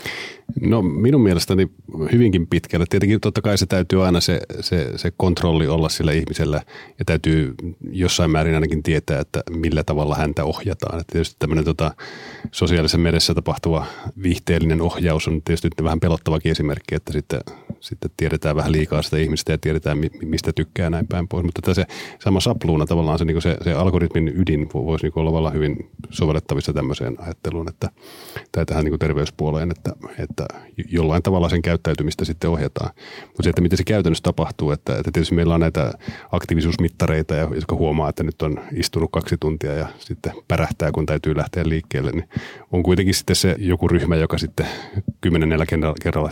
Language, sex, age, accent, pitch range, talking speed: Finnish, male, 30-49, native, 80-90 Hz, 170 wpm